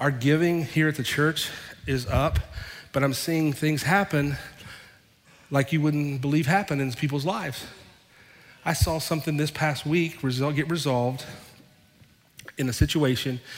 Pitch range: 125-145 Hz